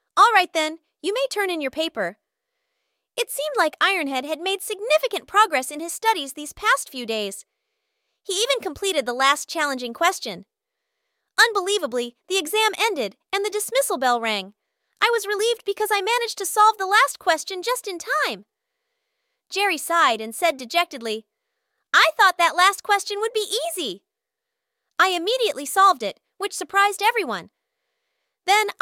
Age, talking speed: 30-49, 155 wpm